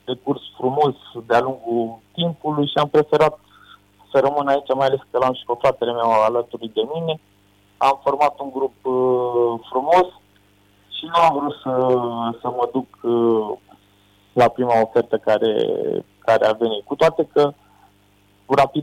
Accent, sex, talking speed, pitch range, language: native, male, 150 wpm, 115-140 Hz, Romanian